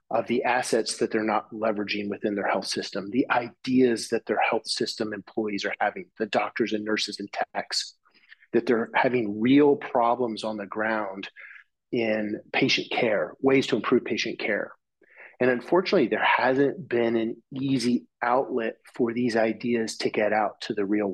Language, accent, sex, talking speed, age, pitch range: English, American, male, 165 wpm, 30-49, 105-120 Hz